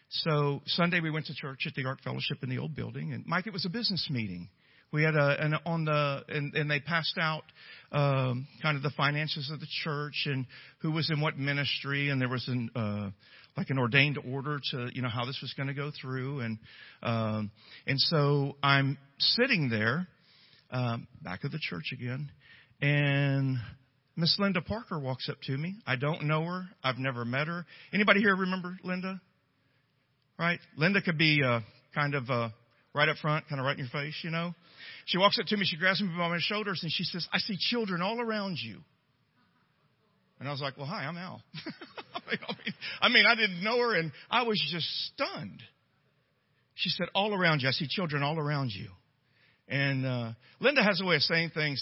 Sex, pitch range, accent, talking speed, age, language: male, 130-165 Hz, American, 205 wpm, 50-69, English